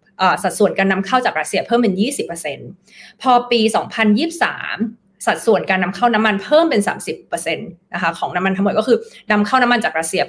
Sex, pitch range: female, 190-240 Hz